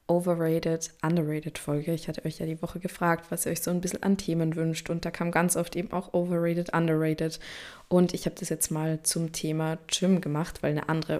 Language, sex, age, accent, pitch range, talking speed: German, female, 20-39, German, 160-180 Hz, 205 wpm